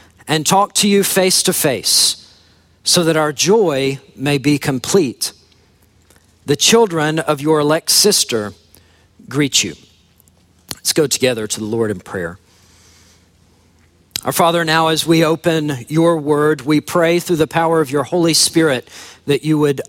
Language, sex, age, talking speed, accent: English, male, 50-69, 150 wpm, American